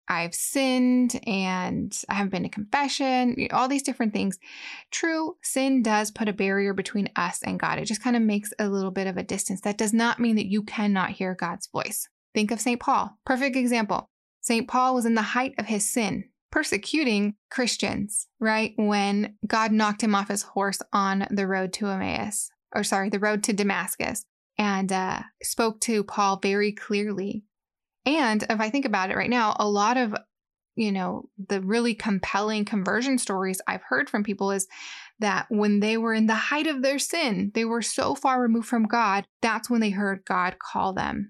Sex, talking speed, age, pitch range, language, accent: female, 195 wpm, 10-29, 200-240 Hz, English, American